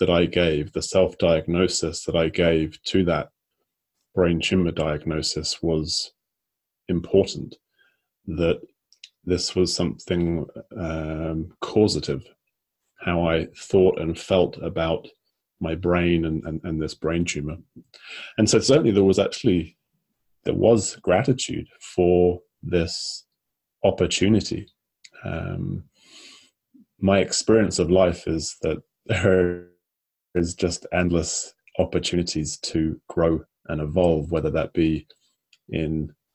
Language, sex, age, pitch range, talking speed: English, male, 30-49, 80-90 Hz, 110 wpm